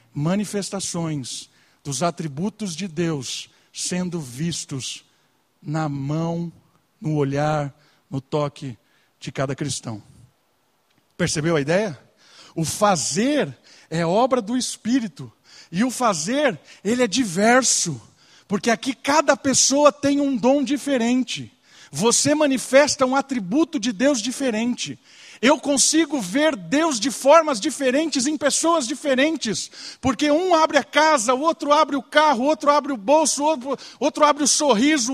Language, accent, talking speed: Portuguese, Brazilian, 130 wpm